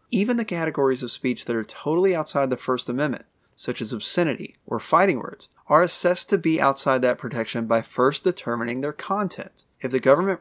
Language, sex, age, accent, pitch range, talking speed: English, male, 30-49, American, 120-150 Hz, 190 wpm